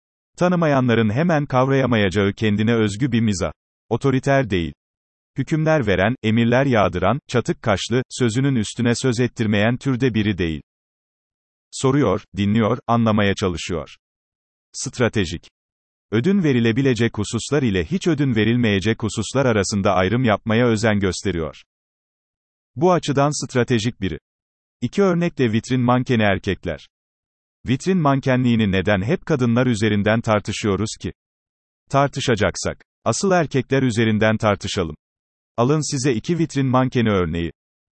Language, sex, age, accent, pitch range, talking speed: Turkish, male, 40-59, native, 100-130 Hz, 110 wpm